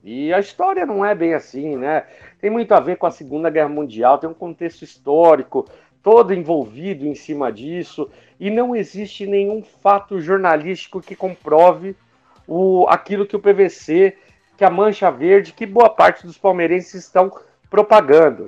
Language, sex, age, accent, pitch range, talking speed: Portuguese, male, 50-69, Brazilian, 165-205 Hz, 160 wpm